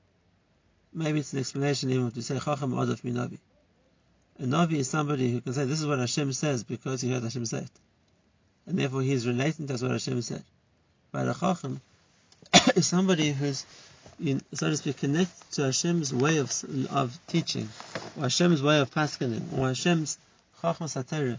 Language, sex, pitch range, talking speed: English, male, 125-165 Hz, 175 wpm